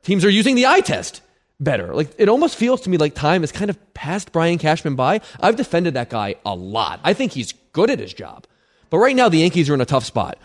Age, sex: 20-39, male